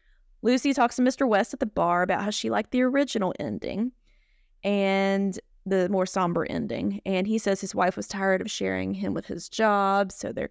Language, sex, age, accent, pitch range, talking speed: English, female, 20-39, American, 185-225 Hz, 200 wpm